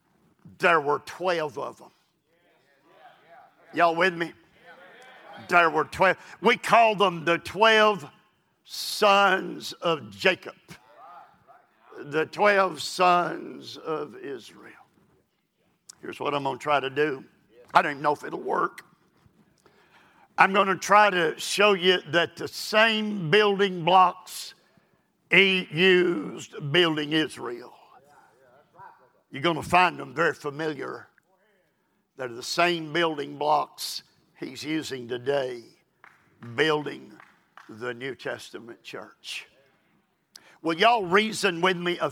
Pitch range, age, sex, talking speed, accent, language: 155-185 Hz, 50-69, male, 115 wpm, American, English